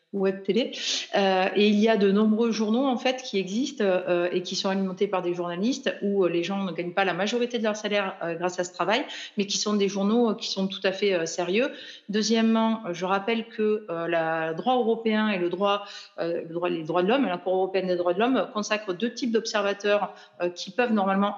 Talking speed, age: 235 wpm, 30-49